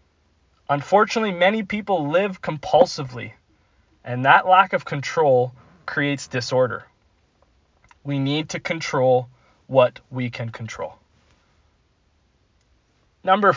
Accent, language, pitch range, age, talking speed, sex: American, English, 115-155 Hz, 20-39, 95 wpm, male